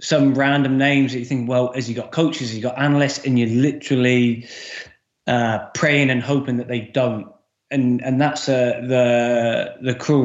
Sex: male